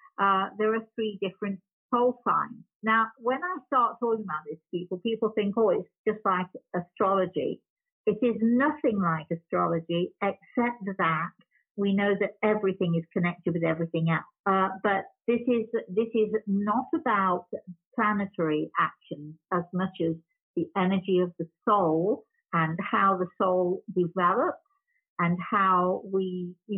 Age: 50-69